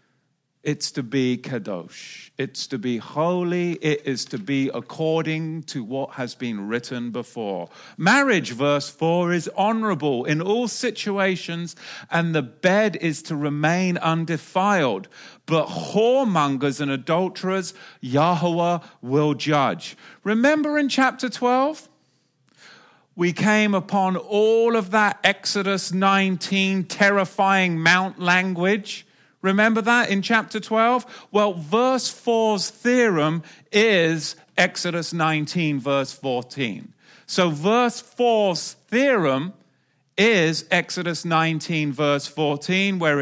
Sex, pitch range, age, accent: male, 155-205 Hz, 40-59, British